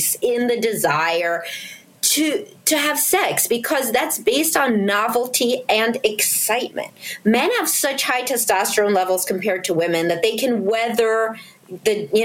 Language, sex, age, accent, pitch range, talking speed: English, female, 30-49, American, 185-250 Hz, 140 wpm